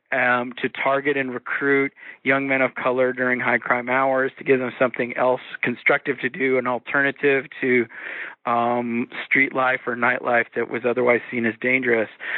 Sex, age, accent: male, 40-59, American